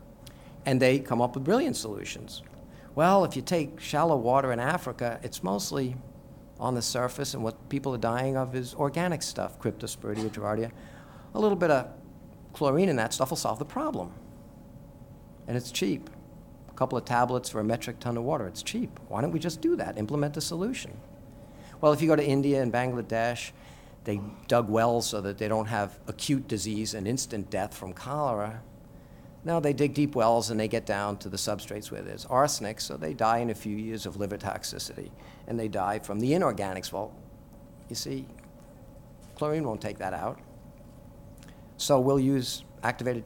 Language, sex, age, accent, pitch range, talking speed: English, male, 50-69, American, 110-140 Hz, 185 wpm